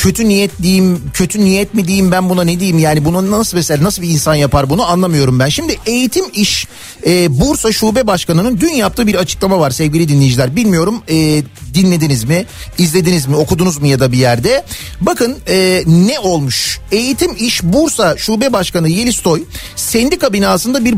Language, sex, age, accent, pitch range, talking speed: Turkish, male, 40-59, native, 155-215 Hz, 170 wpm